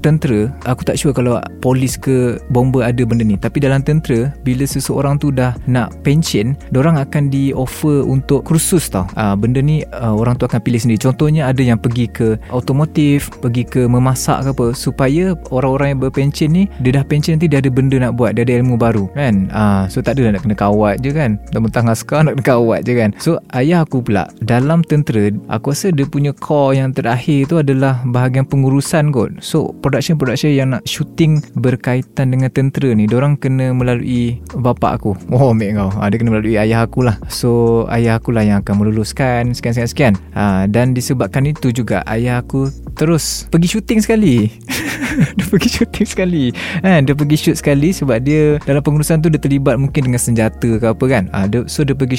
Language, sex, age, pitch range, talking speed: Malay, male, 20-39, 115-145 Hz, 200 wpm